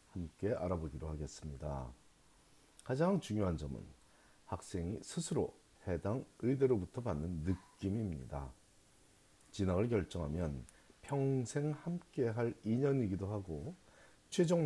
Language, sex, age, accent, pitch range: Korean, male, 40-59, native, 85-125 Hz